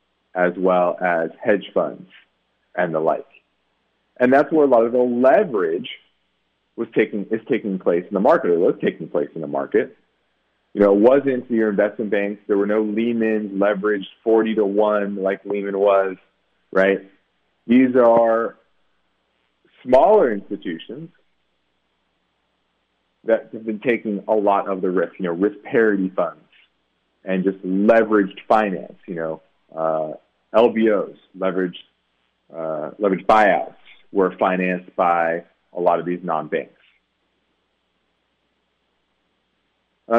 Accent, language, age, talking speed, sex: American, English, 30-49, 135 wpm, male